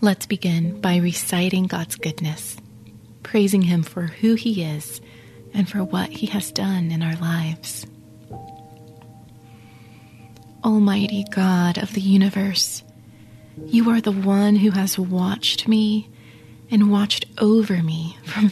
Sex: female